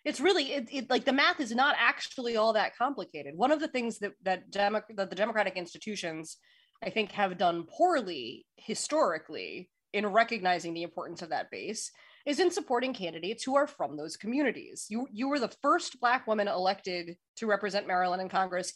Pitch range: 195-280 Hz